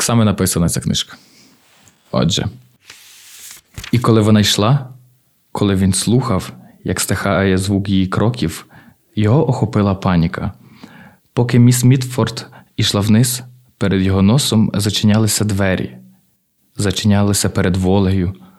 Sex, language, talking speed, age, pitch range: male, Ukrainian, 110 wpm, 20-39, 95-120 Hz